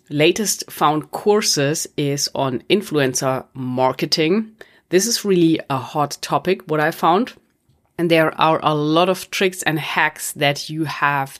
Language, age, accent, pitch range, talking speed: English, 30-49, German, 140-170 Hz, 145 wpm